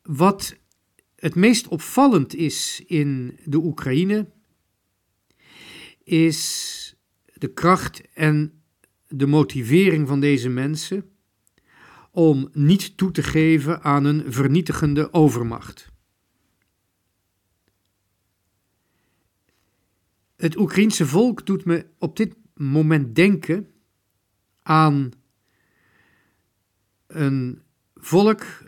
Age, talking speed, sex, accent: 50-69, 80 wpm, male, Dutch